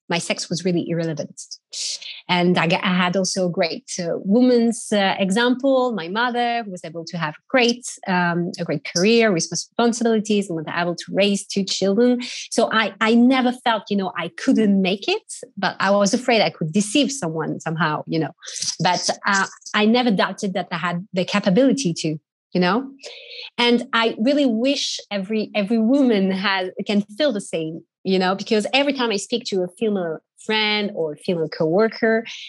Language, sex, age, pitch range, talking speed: English, female, 30-49, 180-240 Hz, 180 wpm